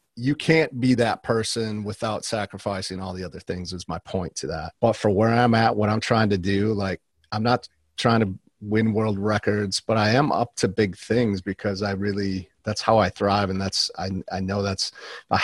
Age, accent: 40-59, American